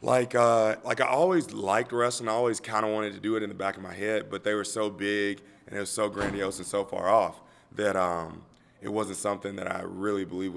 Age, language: 30-49, English